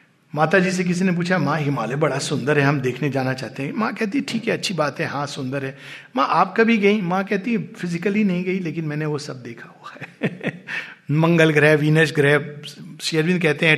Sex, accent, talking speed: male, native, 215 wpm